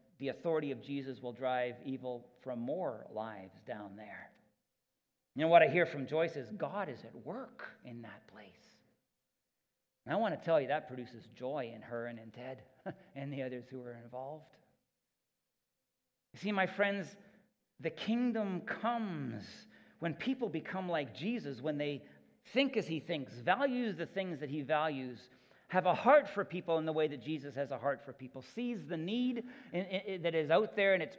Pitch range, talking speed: 130-180 Hz, 185 wpm